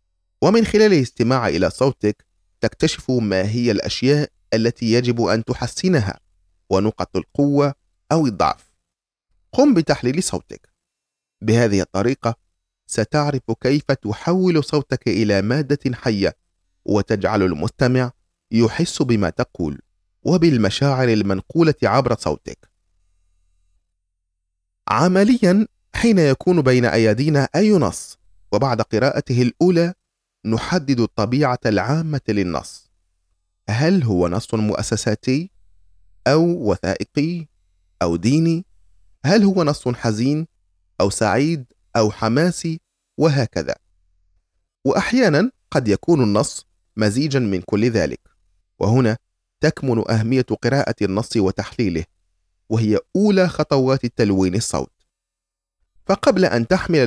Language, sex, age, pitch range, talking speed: Arabic, male, 30-49, 90-145 Hz, 95 wpm